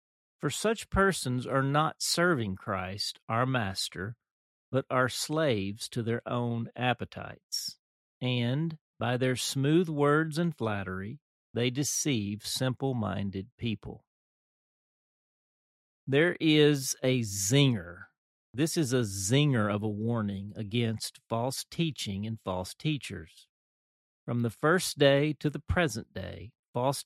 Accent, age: American, 40-59